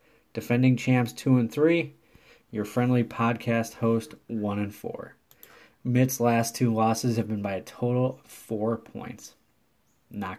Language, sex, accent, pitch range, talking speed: English, male, American, 115-130 Hz, 120 wpm